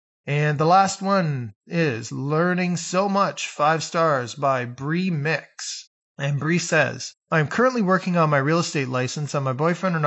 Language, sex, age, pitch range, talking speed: English, male, 20-39, 140-165 Hz, 165 wpm